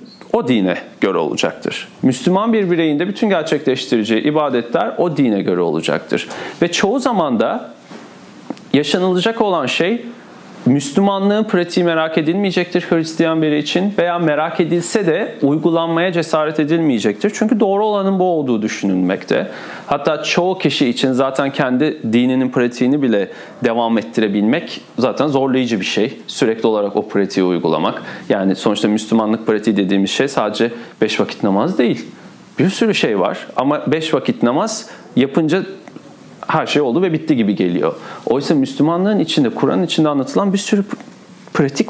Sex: male